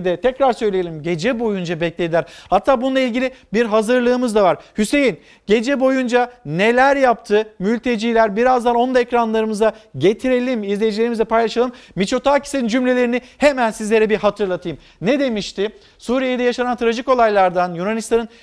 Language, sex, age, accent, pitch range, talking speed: Turkish, male, 50-69, native, 205-245 Hz, 125 wpm